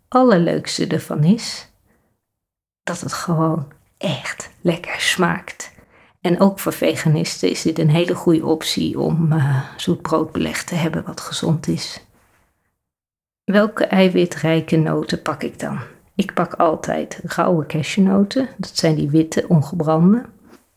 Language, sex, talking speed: Dutch, female, 130 wpm